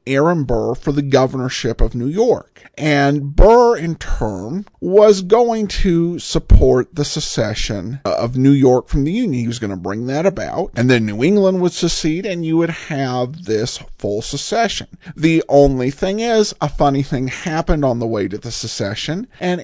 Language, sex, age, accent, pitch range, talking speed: English, male, 50-69, American, 115-165 Hz, 180 wpm